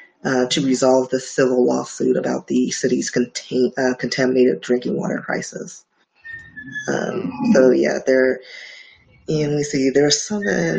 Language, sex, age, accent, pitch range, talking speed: English, female, 20-39, American, 130-150 Hz, 135 wpm